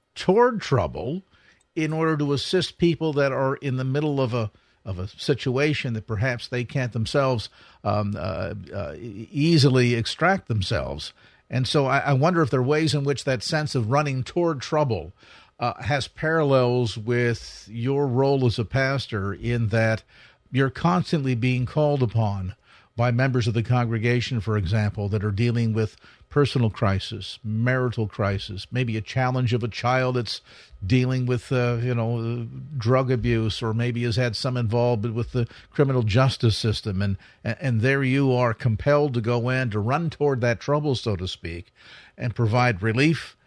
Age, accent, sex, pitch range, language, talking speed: 50-69, American, male, 115-145 Hz, English, 170 wpm